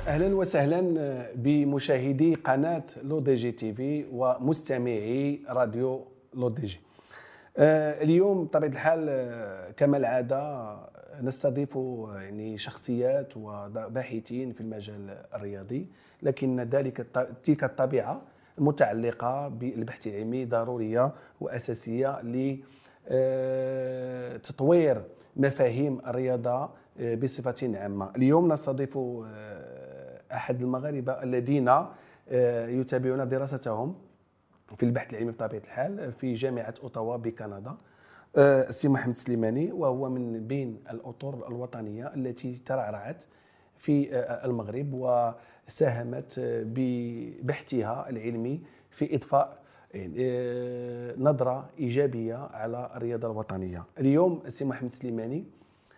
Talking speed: 80 wpm